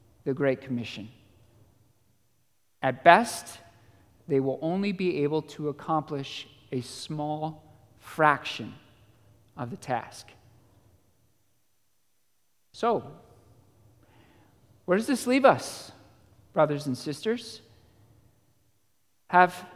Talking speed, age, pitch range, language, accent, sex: 85 wpm, 50-69, 110-175 Hz, English, American, male